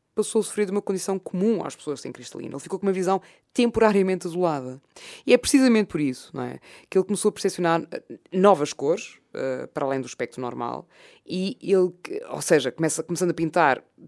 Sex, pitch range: female, 145-185 Hz